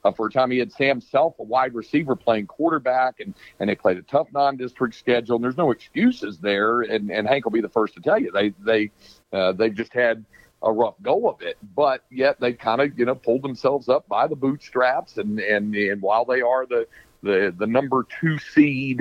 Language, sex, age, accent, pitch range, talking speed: English, male, 50-69, American, 120-155 Hz, 225 wpm